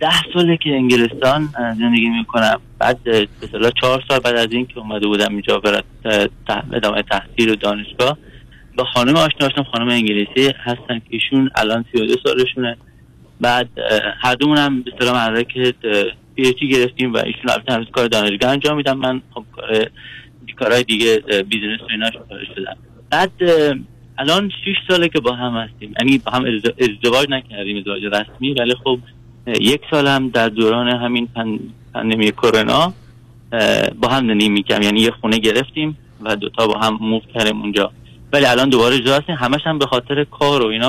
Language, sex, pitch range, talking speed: Persian, male, 115-135 Hz, 160 wpm